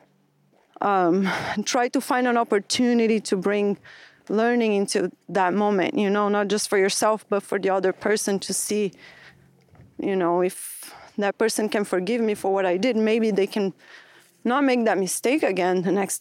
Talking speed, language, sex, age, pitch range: 180 wpm, English, female, 30-49, 195-245 Hz